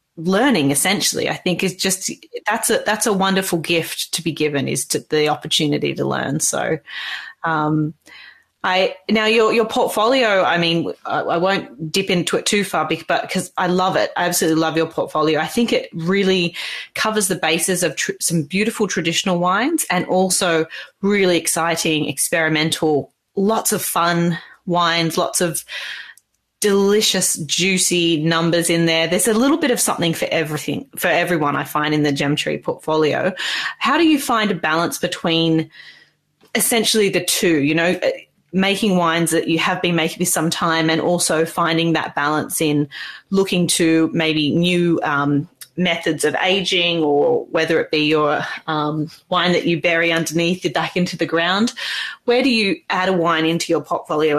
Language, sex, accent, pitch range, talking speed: English, female, Australian, 160-190 Hz, 170 wpm